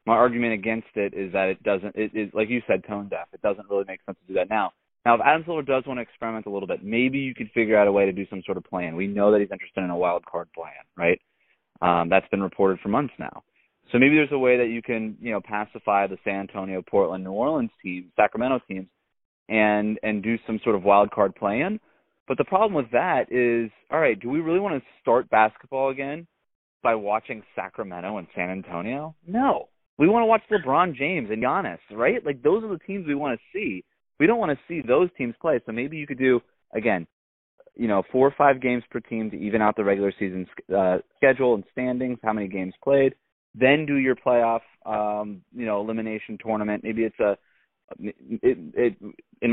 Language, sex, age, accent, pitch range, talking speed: English, male, 20-39, American, 95-125 Hz, 230 wpm